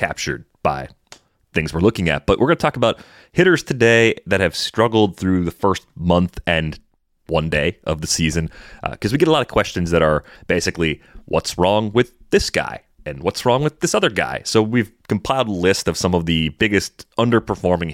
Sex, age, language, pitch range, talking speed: male, 30-49, English, 80-105 Hz, 205 wpm